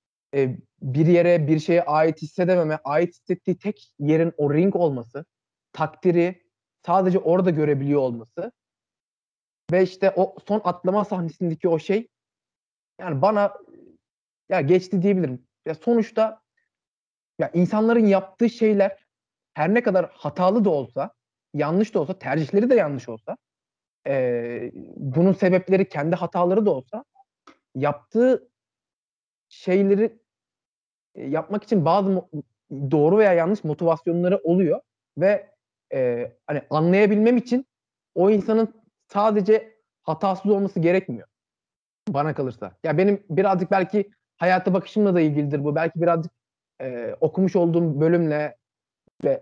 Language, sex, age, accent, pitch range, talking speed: Turkish, male, 30-49, native, 150-195 Hz, 115 wpm